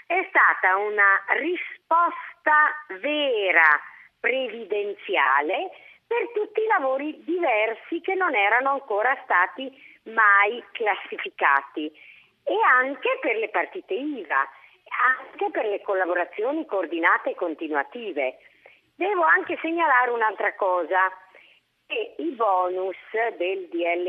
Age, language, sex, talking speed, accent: 40-59, Italian, female, 100 wpm, native